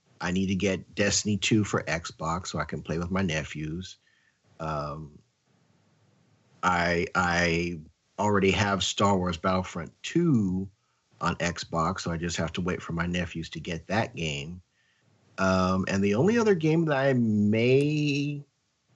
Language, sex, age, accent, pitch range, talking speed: English, male, 50-69, American, 90-110 Hz, 150 wpm